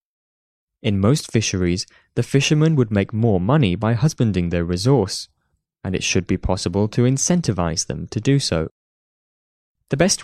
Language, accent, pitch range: Chinese, British, 95-135 Hz